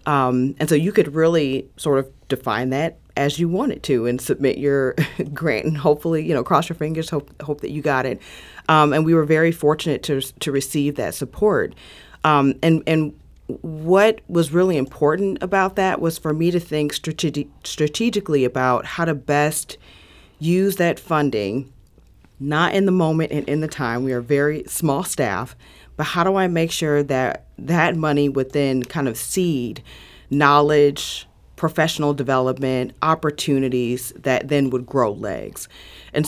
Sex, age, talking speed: female, 40-59, 170 wpm